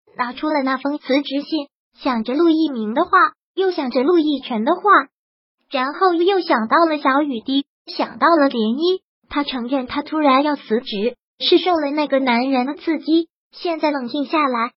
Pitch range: 265-330 Hz